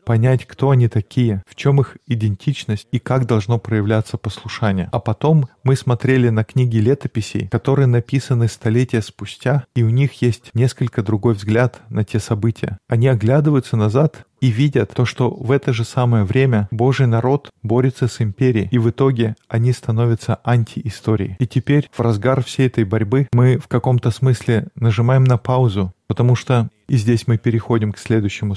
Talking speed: 165 wpm